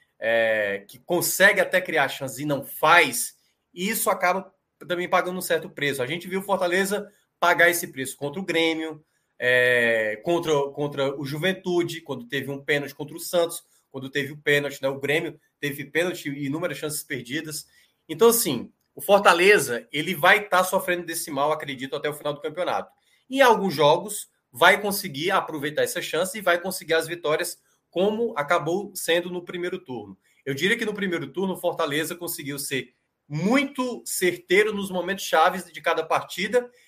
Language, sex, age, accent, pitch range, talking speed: Portuguese, male, 20-39, Brazilian, 145-190 Hz, 175 wpm